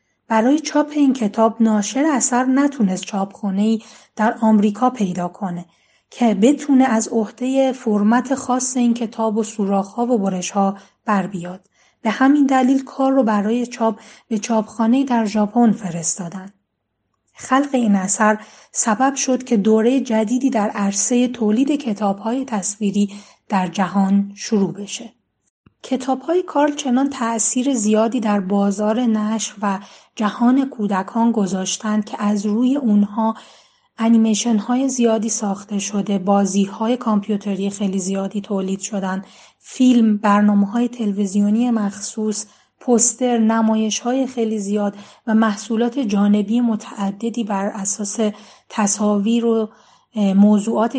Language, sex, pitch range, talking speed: Persian, female, 200-240 Hz, 120 wpm